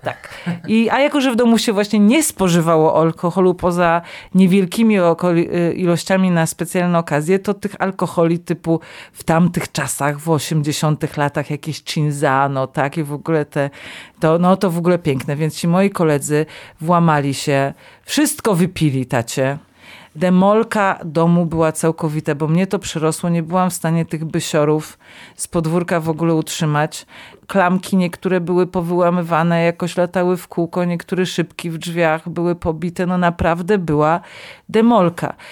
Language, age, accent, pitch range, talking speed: Polish, 40-59, native, 160-185 Hz, 150 wpm